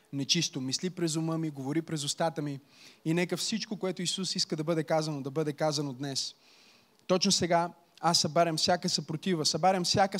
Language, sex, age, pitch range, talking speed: Bulgarian, male, 20-39, 130-185 Hz, 175 wpm